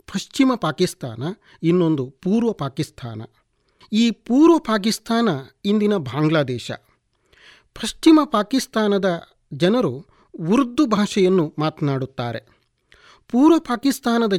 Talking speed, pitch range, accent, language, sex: 75 wpm, 150-225 Hz, native, Kannada, male